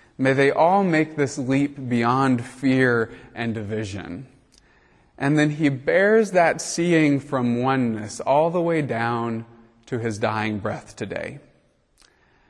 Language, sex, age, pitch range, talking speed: English, male, 30-49, 115-140 Hz, 130 wpm